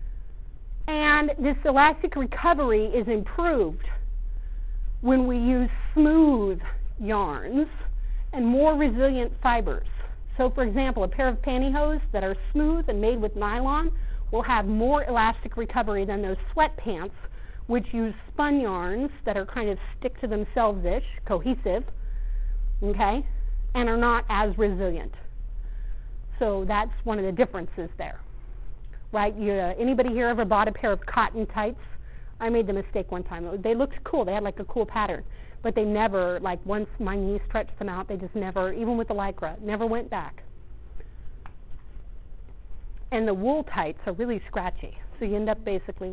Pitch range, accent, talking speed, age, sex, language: 195-265 Hz, American, 160 wpm, 40-59, female, English